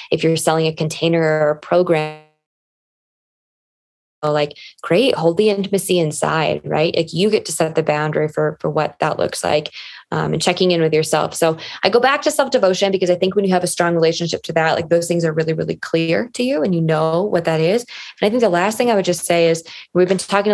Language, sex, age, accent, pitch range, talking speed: English, female, 20-39, American, 160-200 Hz, 235 wpm